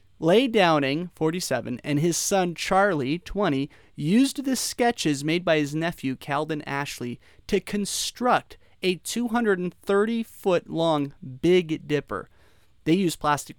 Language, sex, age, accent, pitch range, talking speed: English, male, 30-49, American, 140-190 Hz, 125 wpm